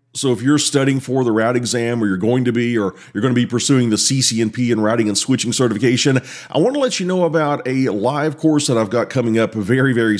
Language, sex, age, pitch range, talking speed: English, male, 40-59, 110-140 Hz, 255 wpm